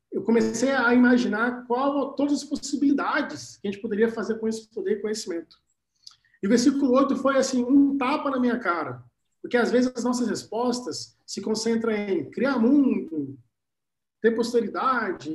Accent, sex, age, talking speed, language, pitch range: Brazilian, male, 40-59, 170 wpm, Portuguese, 195-265 Hz